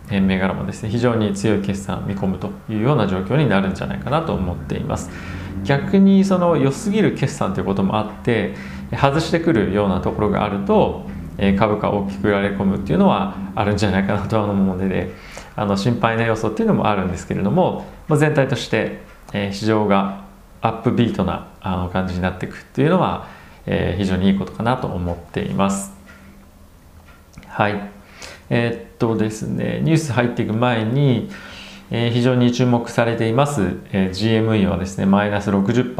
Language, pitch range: Japanese, 95-120 Hz